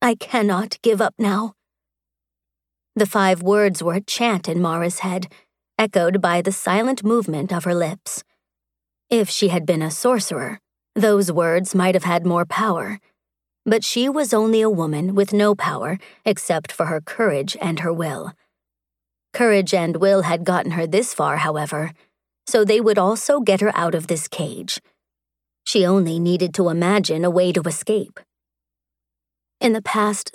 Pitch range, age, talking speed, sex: 165-210 Hz, 30-49, 160 wpm, female